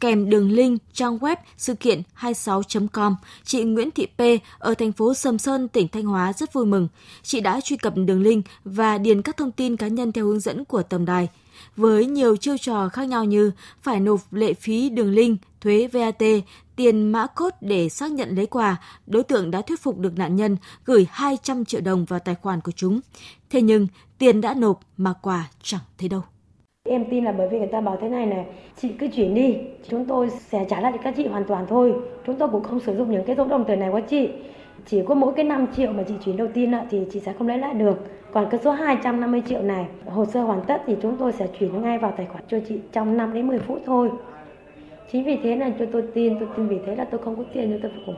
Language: Vietnamese